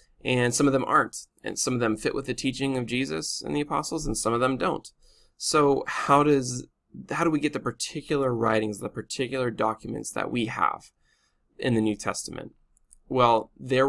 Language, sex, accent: English, male, American